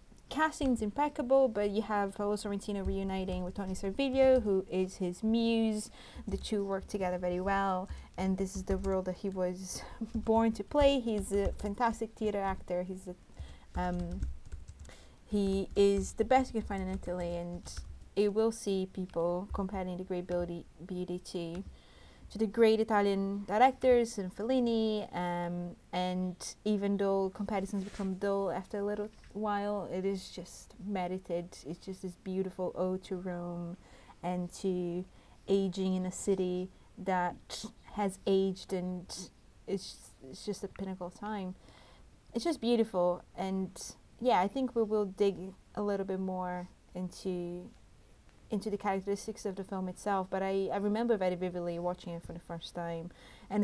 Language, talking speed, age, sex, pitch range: English, 160 wpm, 30-49, female, 180-210 Hz